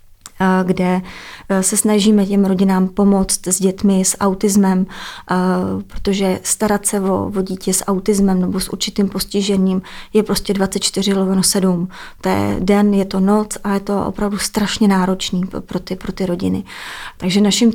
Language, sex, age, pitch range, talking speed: Czech, female, 30-49, 185-200 Hz, 145 wpm